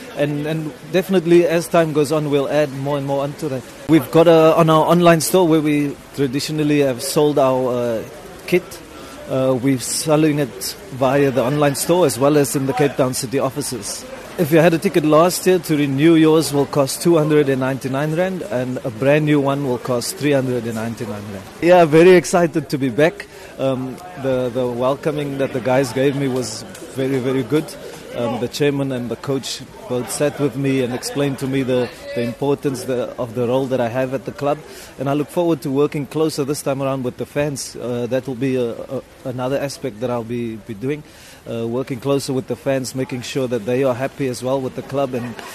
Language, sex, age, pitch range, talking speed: English, male, 30-49, 130-150 Hz, 205 wpm